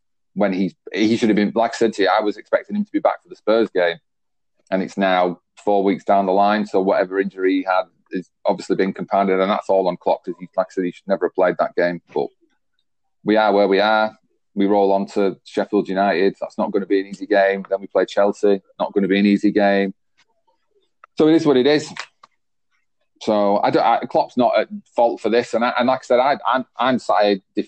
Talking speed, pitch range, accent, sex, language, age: 240 wpm, 100-110 Hz, British, male, English, 30-49